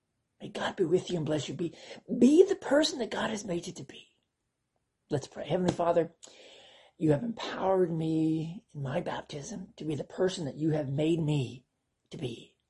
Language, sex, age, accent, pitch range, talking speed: English, male, 40-59, American, 135-195 Hz, 195 wpm